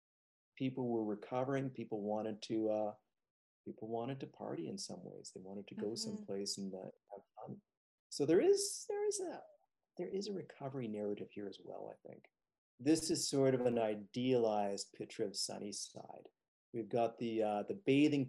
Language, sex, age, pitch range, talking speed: English, male, 40-59, 100-130 Hz, 175 wpm